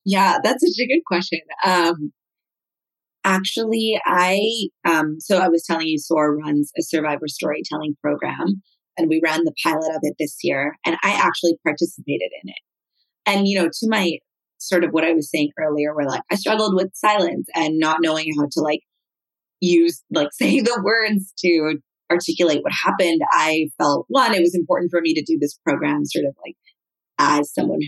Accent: American